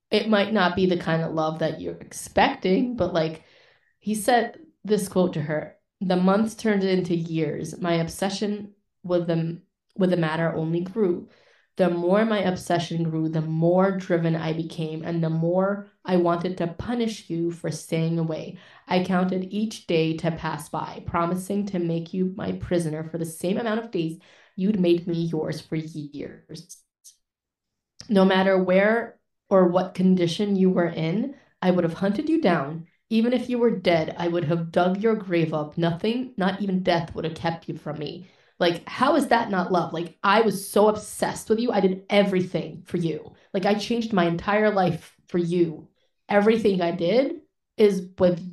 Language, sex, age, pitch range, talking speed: English, female, 20-39, 165-205 Hz, 180 wpm